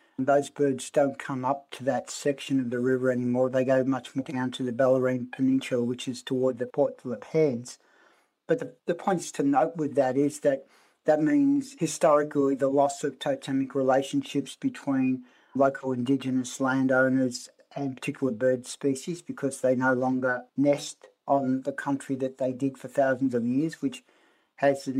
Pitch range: 130-150 Hz